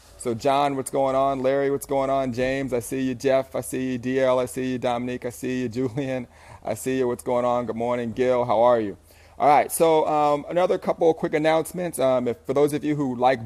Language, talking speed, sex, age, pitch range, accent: English, 240 wpm, male, 30-49, 120-135 Hz, American